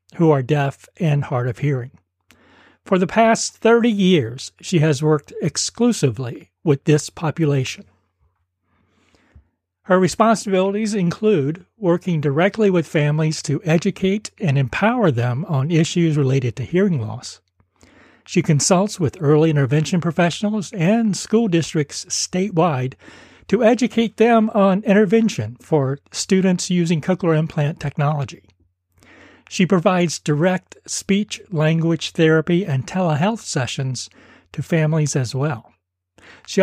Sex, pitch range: male, 135-185 Hz